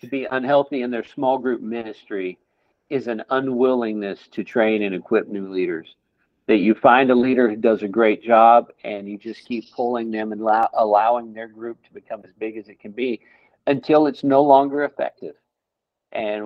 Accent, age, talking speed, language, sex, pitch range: American, 50-69, 190 wpm, English, male, 105-125 Hz